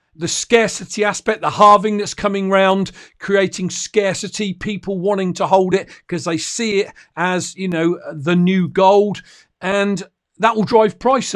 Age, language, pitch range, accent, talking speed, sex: 50-69, English, 175-210 Hz, British, 160 wpm, male